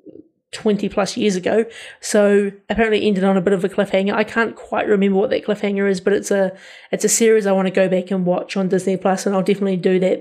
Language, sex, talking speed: English, female, 240 wpm